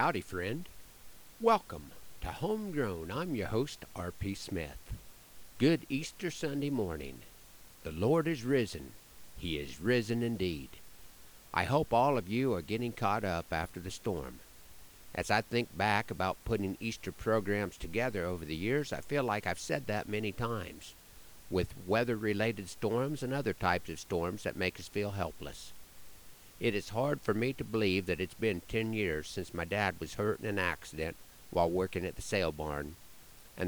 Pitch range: 85-110 Hz